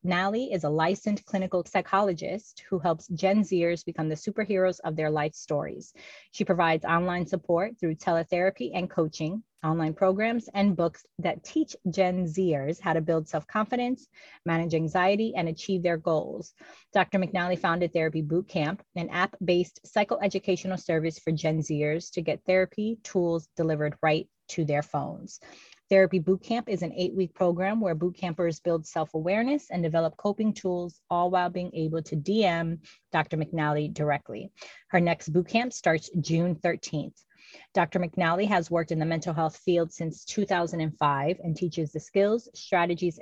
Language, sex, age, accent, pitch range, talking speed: English, female, 30-49, American, 165-195 Hz, 155 wpm